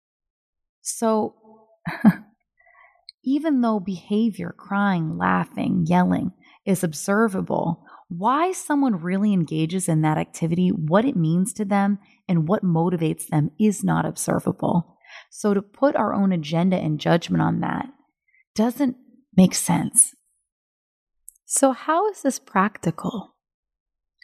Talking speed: 115 wpm